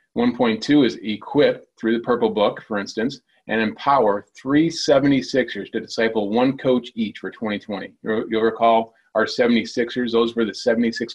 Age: 30-49